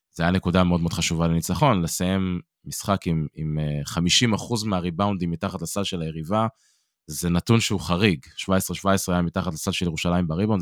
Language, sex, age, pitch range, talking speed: Hebrew, male, 20-39, 85-110 Hz, 160 wpm